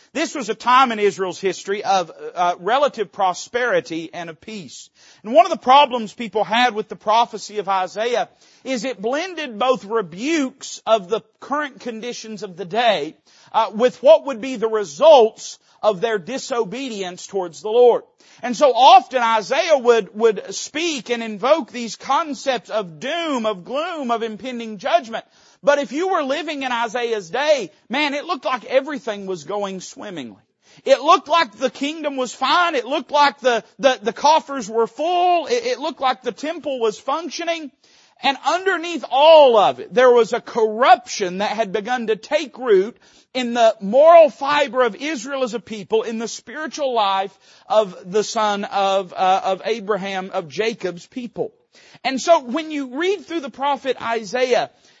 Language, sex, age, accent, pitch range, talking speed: English, male, 40-59, American, 215-295 Hz, 170 wpm